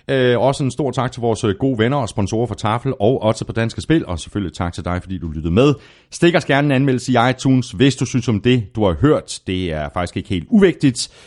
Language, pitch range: Danish, 85-130 Hz